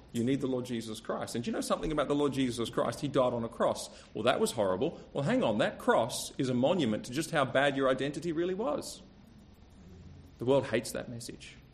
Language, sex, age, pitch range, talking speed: English, male, 30-49, 110-140 Hz, 235 wpm